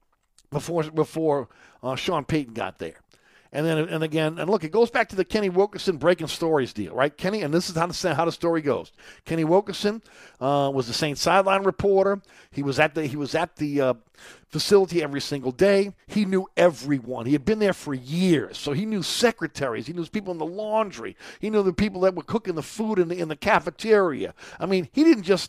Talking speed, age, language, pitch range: 215 wpm, 50-69, English, 140-190 Hz